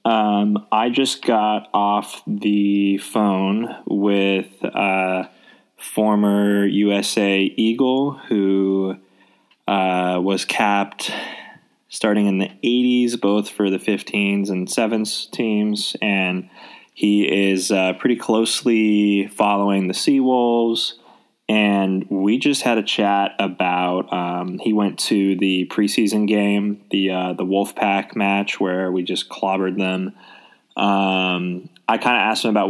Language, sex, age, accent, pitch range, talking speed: English, male, 20-39, American, 95-105 Hz, 125 wpm